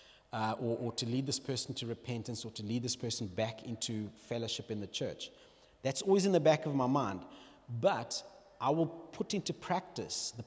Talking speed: 200 wpm